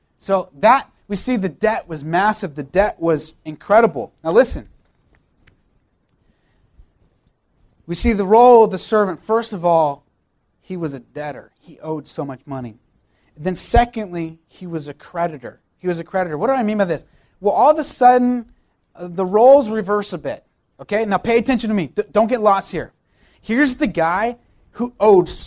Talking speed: 175 wpm